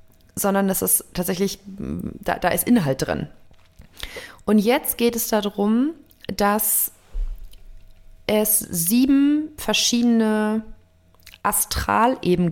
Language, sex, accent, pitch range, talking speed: German, female, German, 190-235 Hz, 90 wpm